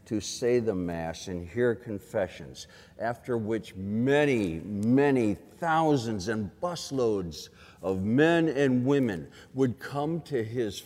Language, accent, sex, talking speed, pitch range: English, American, male, 120 wpm, 90-125 Hz